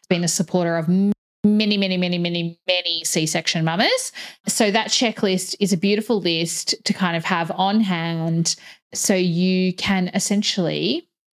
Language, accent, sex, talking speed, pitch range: English, Australian, female, 150 wpm, 170-220 Hz